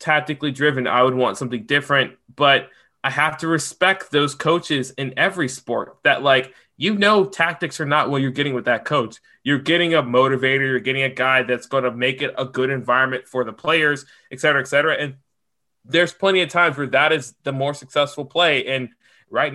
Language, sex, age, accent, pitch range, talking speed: English, male, 20-39, American, 130-160 Hz, 200 wpm